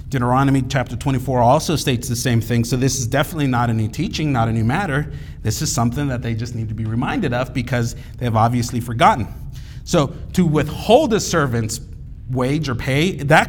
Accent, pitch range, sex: American, 130-195 Hz, male